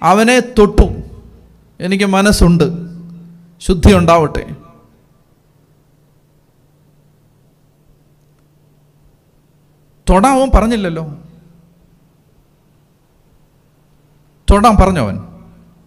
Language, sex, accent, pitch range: Malayalam, male, native, 150-230 Hz